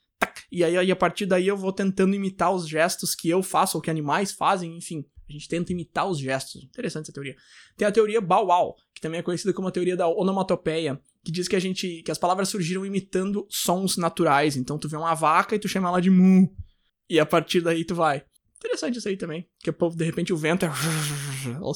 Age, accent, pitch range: 20-39, Brazilian, 160-200 Hz